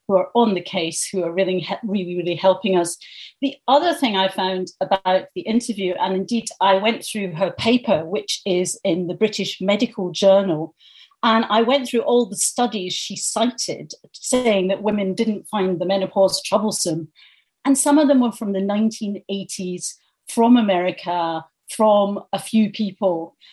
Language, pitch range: English, 185-235 Hz